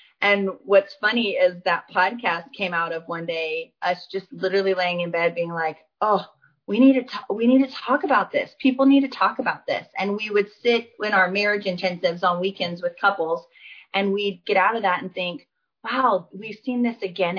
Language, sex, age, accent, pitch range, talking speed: English, female, 30-49, American, 175-240 Hz, 210 wpm